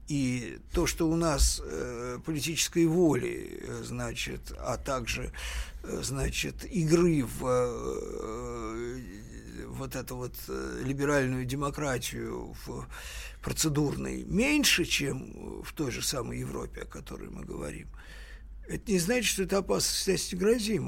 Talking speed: 110 wpm